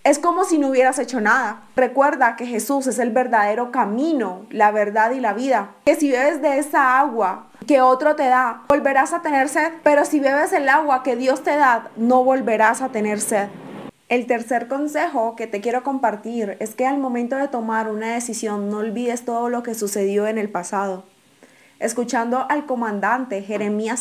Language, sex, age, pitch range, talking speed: Spanish, female, 20-39, 220-275 Hz, 185 wpm